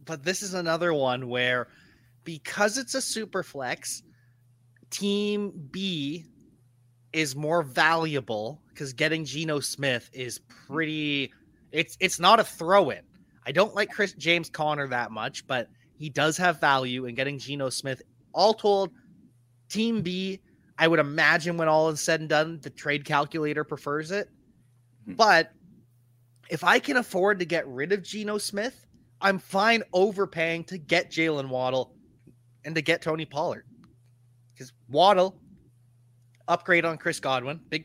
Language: English